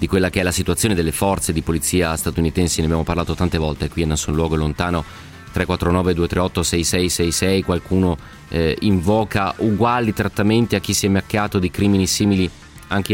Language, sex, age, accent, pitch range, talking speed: Italian, male, 30-49, native, 85-100 Hz, 165 wpm